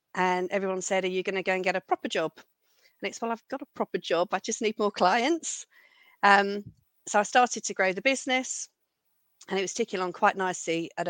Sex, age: female, 40-59